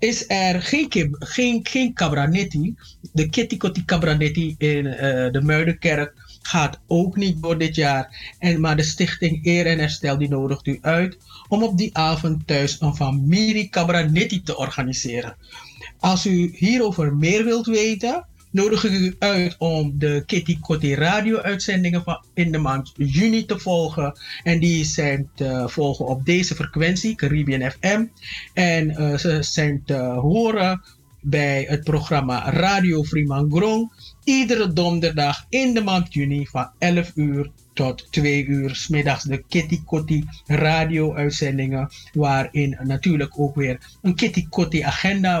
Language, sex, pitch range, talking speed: English, male, 140-180 Hz, 145 wpm